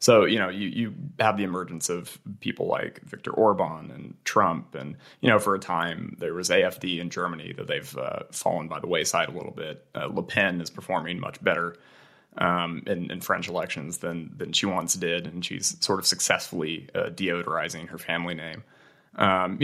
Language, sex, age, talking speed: English, male, 20-39, 195 wpm